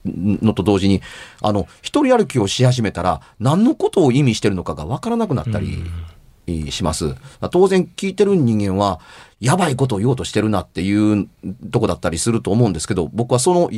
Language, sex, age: Japanese, male, 40-59